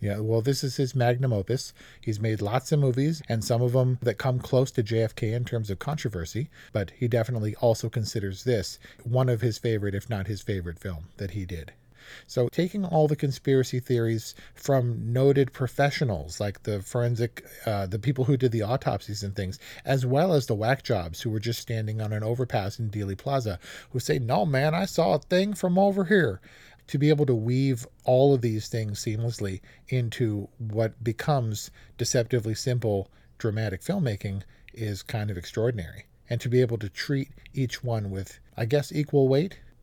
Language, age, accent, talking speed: English, 40-59, American, 190 wpm